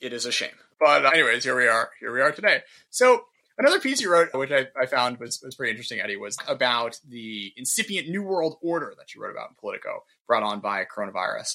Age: 20-39